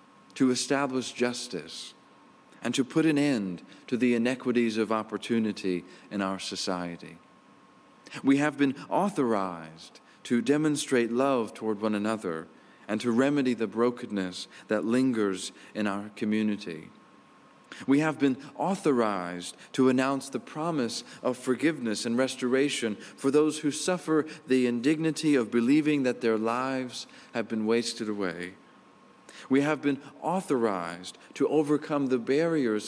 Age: 40-59